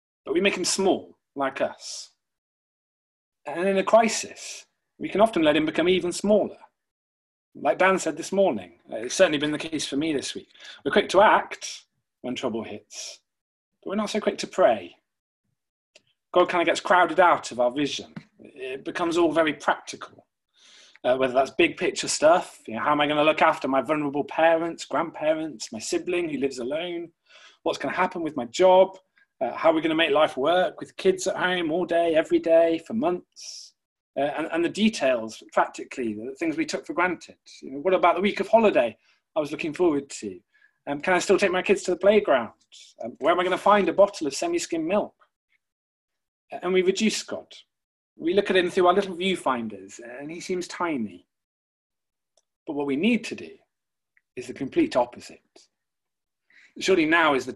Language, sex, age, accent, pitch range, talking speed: English, male, 30-49, British, 165-230 Hz, 195 wpm